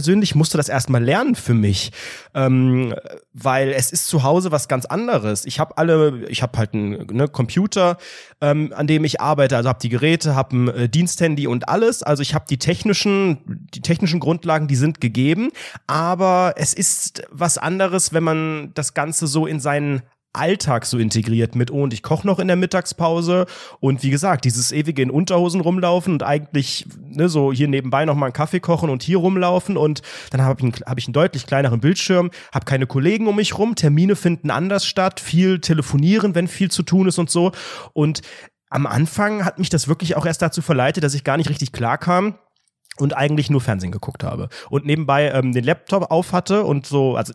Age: 30-49